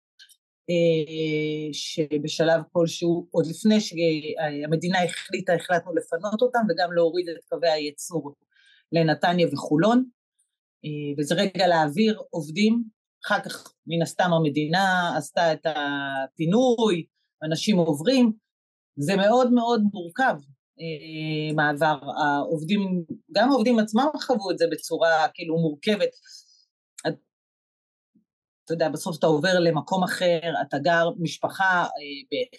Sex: female